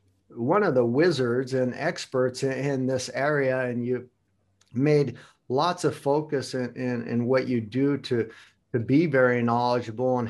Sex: male